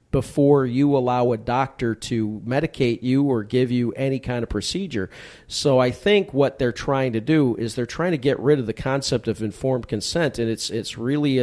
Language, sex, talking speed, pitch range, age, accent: English, male, 205 wpm, 115-135 Hz, 40-59, American